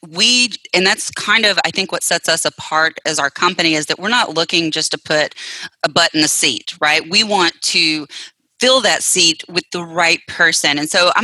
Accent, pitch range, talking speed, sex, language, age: American, 155-190 Hz, 220 wpm, female, English, 30-49